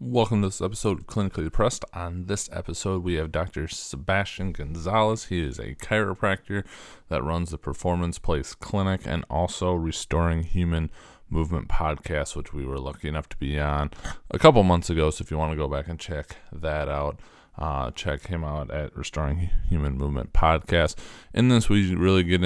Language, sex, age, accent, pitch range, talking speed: English, male, 20-39, American, 75-90 Hz, 180 wpm